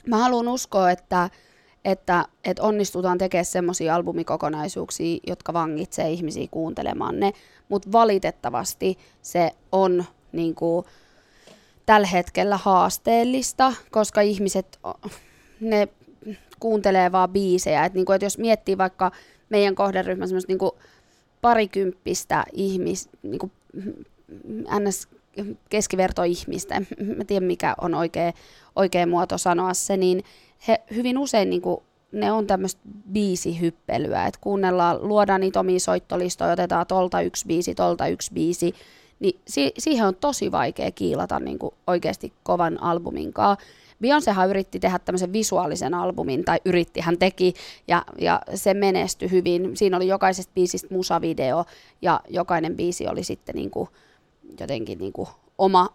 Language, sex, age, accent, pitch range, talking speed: Finnish, female, 20-39, native, 175-200 Hz, 125 wpm